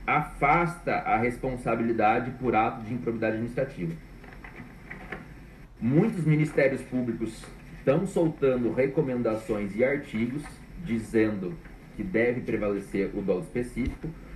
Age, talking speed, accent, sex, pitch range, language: 40-59, 95 wpm, Brazilian, male, 115-165 Hz, Portuguese